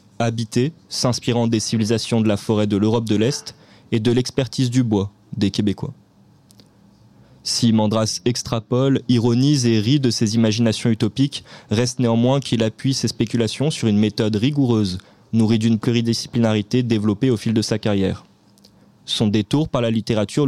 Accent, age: French, 20-39